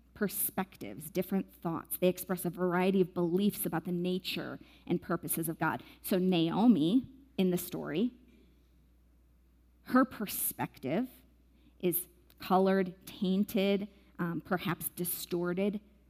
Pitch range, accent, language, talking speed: 160-205 Hz, American, English, 110 wpm